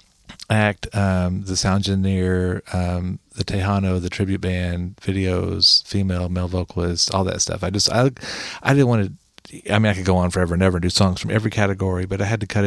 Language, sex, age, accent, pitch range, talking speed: English, male, 40-59, American, 95-115 Hz, 210 wpm